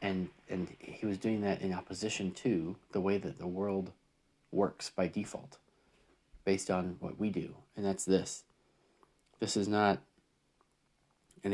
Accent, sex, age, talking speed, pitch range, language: American, male, 40-59, 150 wpm, 90-105 Hz, English